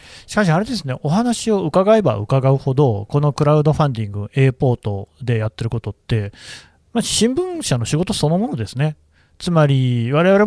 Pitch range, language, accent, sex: 120-160 Hz, Japanese, native, male